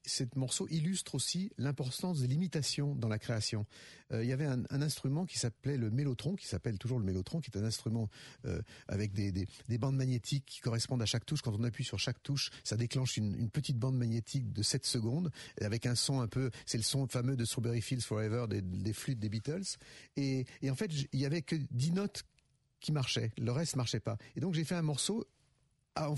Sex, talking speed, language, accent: male, 230 wpm, French, French